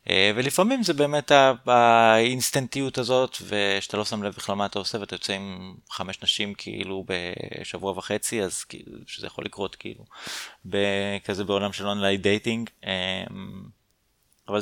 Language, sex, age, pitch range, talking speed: Hebrew, male, 20-39, 95-115 Hz, 135 wpm